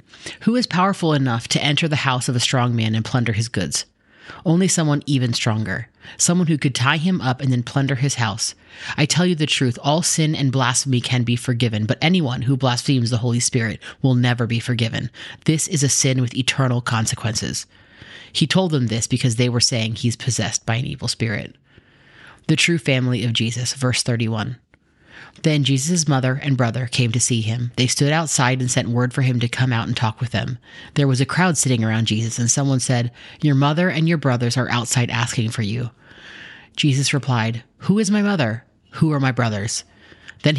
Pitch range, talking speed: 115-140 Hz, 205 wpm